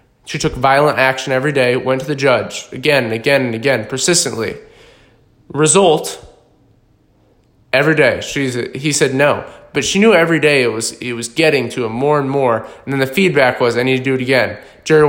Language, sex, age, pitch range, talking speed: English, male, 20-39, 130-155 Hz, 190 wpm